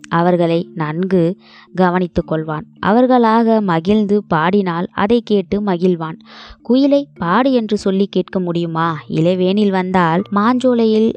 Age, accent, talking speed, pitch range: 20-39, native, 105 wpm, 170-210 Hz